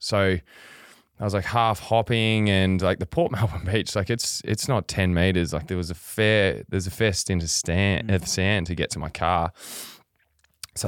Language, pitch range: English, 90-110 Hz